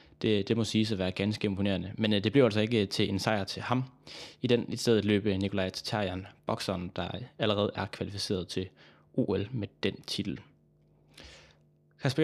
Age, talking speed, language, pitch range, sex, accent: 20-39, 175 wpm, Danish, 95-120 Hz, male, native